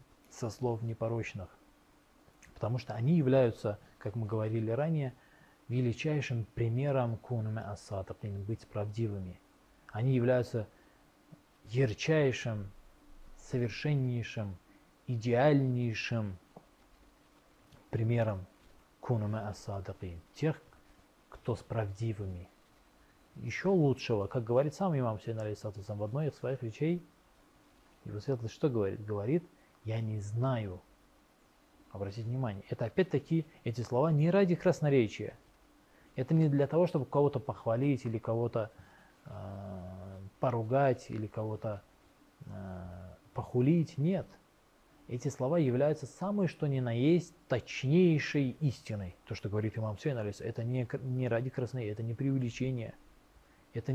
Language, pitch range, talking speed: Russian, 105-135 Hz, 110 wpm